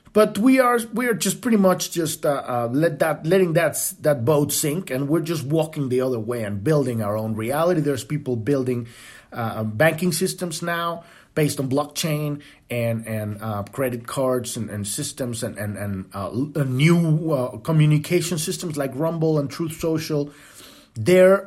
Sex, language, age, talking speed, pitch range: male, English, 30-49, 175 wpm, 120-170 Hz